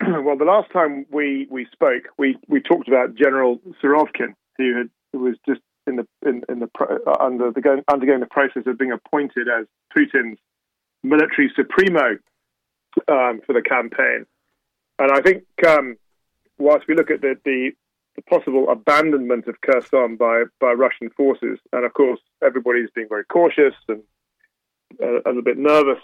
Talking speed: 165 wpm